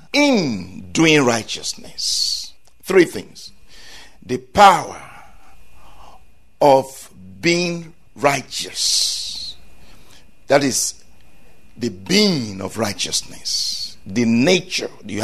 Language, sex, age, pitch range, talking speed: English, male, 60-79, 130-210 Hz, 75 wpm